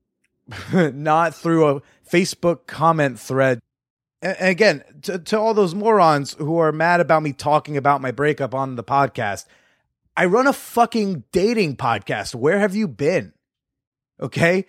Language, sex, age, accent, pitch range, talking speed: English, male, 30-49, American, 135-175 Hz, 145 wpm